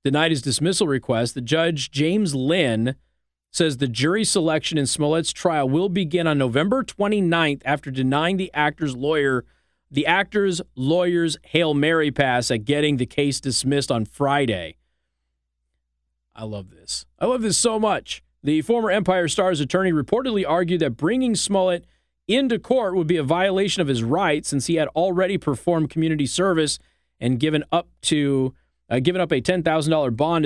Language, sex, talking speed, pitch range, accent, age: English, male, 160 wpm, 125-170 Hz, American, 40-59